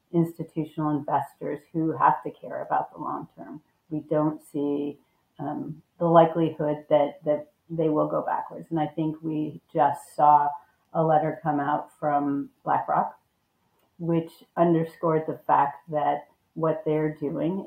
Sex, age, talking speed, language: female, 40-59, 145 wpm, English